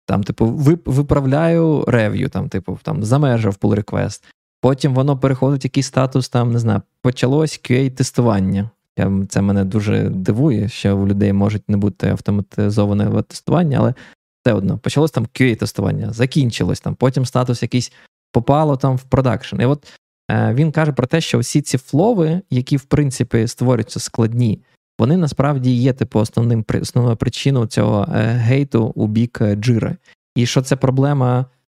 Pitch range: 115-140 Hz